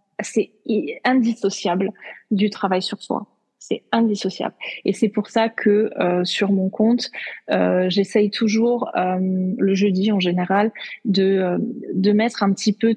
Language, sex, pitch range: French, female, 195-225 Hz